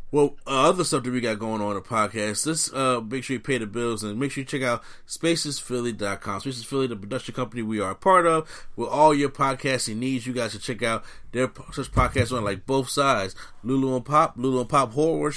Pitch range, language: 120-145 Hz, English